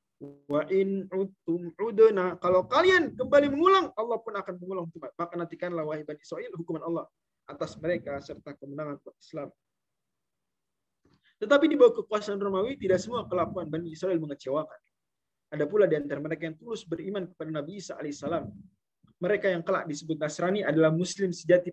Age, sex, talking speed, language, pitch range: 20-39, male, 145 wpm, Indonesian, 170-220 Hz